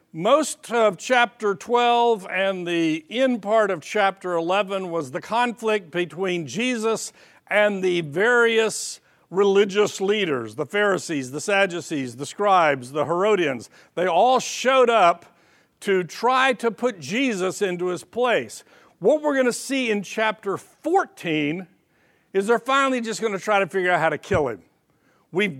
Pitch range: 180-240 Hz